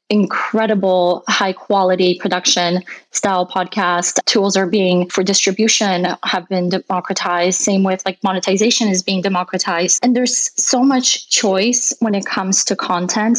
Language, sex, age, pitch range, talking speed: English, female, 20-39, 185-215 Hz, 140 wpm